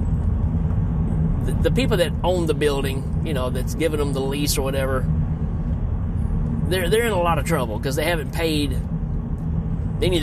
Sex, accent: male, American